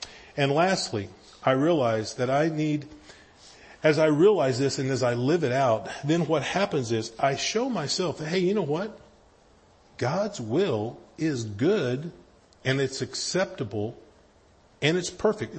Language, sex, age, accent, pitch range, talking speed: English, male, 40-59, American, 110-140 Hz, 145 wpm